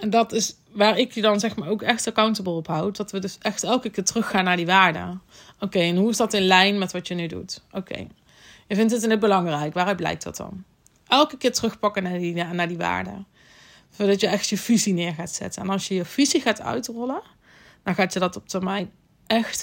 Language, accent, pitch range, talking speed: Dutch, Dutch, 180-215 Hz, 240 wpm